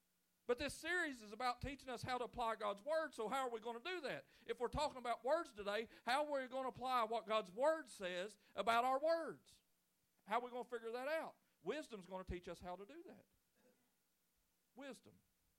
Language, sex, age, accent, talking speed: English, male, 40-59, American, 220 wpm